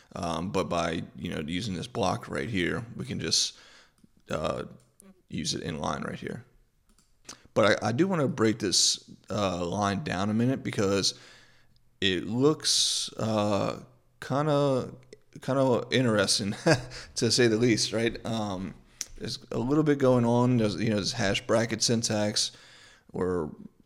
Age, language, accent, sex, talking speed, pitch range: 30-49, English, American, male, 150 wpm, 95-120 Hz